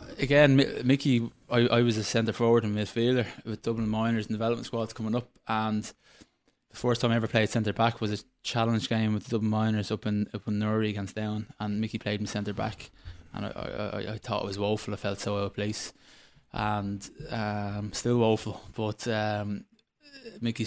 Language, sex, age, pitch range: English, male, 20-39, 105-115 Hz